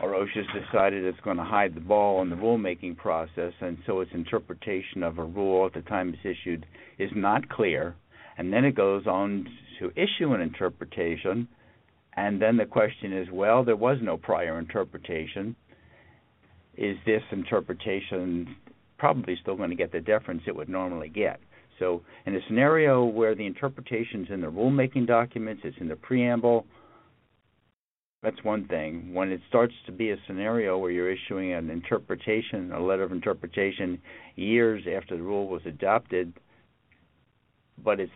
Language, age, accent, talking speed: English, 60-79, American, 165 wpm